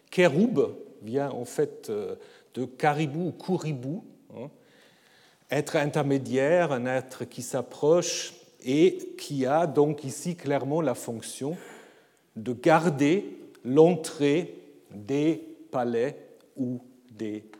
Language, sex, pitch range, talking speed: French, male, 130-180 Hz, 100 wpm